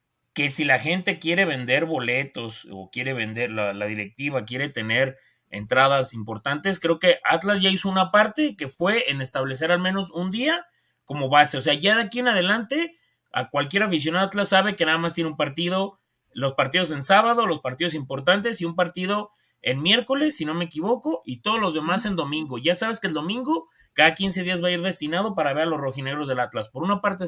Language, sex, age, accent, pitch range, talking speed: Spanish, male, 30-49, Mexican, 155-225 Hz, 215 wpm